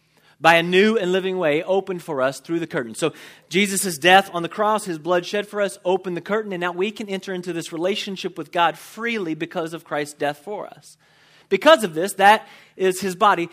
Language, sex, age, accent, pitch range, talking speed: English, male, 30-49, American, 145-190 Hz, 220 wpm